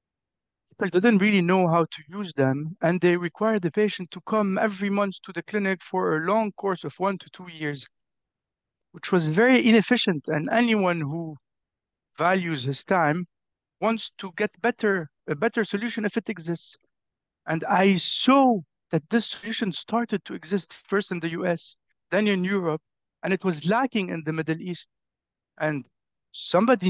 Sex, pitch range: male, 155-205 Hz